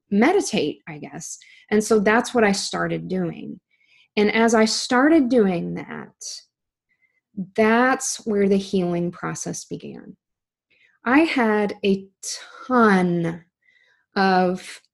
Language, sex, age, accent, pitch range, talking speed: English, female, 20-39, American, 180-230 Hz, 110 wpm